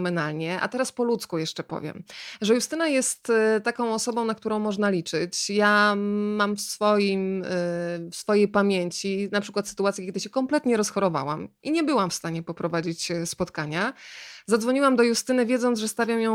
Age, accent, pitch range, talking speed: 20-39, native, 175-220 Hz, 160 wpm